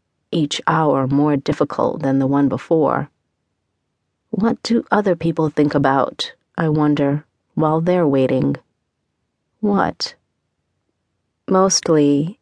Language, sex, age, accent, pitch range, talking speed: English, female, 40-59, American, 145-170 Hz, 100 wpm